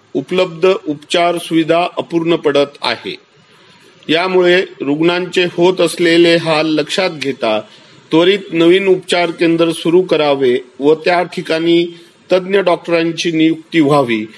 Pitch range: 150-180 Hz